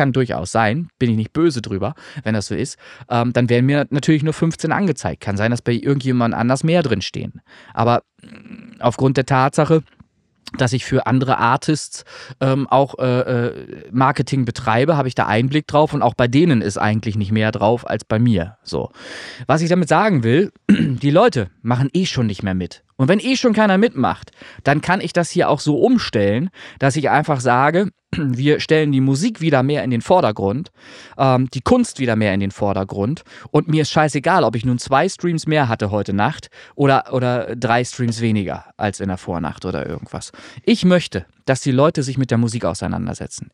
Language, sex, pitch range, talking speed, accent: German, male, 115-155 Hz, 195 wpm, German